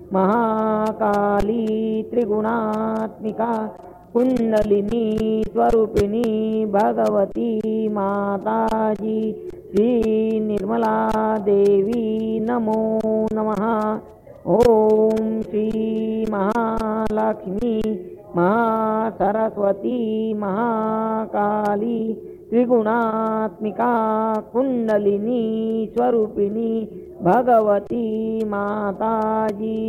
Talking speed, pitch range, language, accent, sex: 40 wpm, 215-225 Hz, English, Indian, female